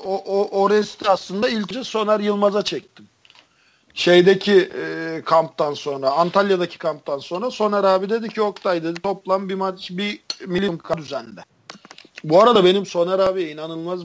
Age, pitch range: 50-69, 145-200 Hz